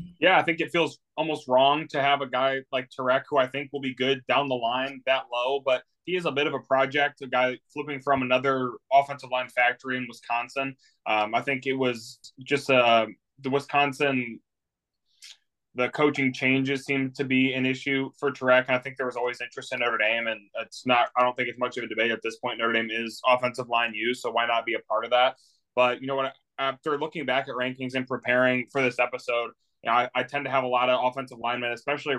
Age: 20-39